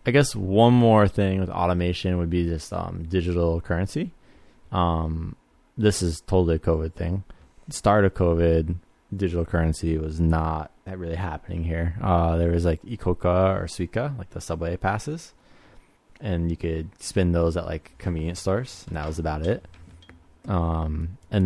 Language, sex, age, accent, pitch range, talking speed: English, male, 20-39, American, 85-95 Hz, 160 wpm